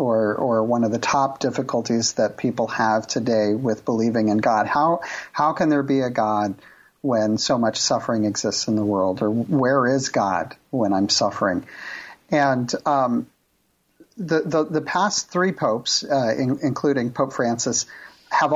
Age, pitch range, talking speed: 50-69, 115-150 Hz, 165 wpm